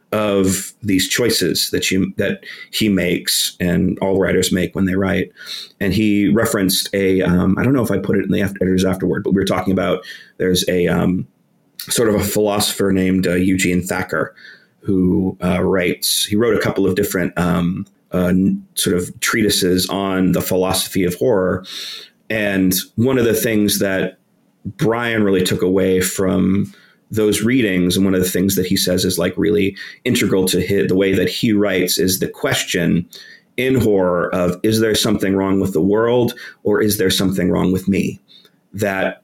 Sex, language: male, English